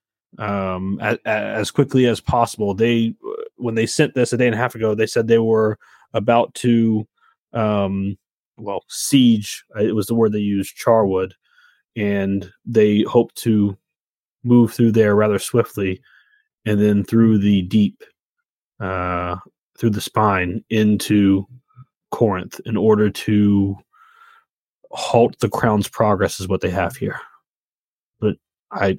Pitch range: 105-125 Hz